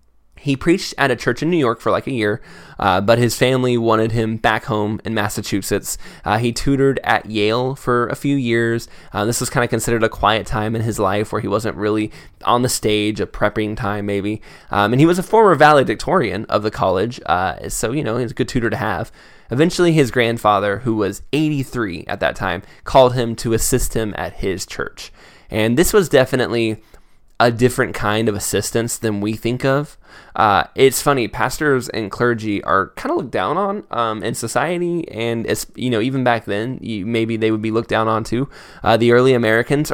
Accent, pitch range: American, 110-130 Hz